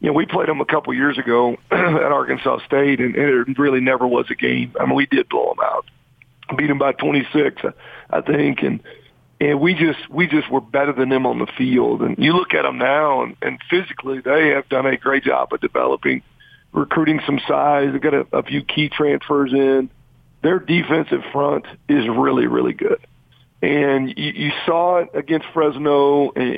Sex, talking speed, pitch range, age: male, 200 wpm, 130-150 Hz, 40-59